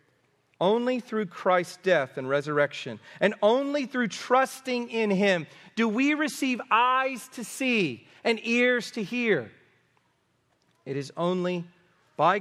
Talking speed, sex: 125 wpm, male